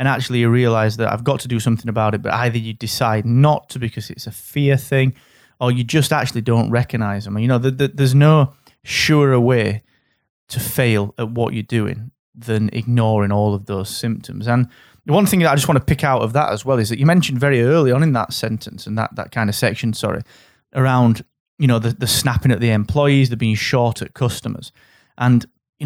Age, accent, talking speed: 30-49, British, 225 wpm